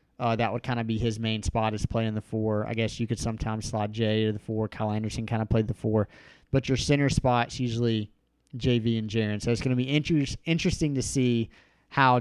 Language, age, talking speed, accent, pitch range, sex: English, 30-49, 240 wpm, American, 110-130 Hz, male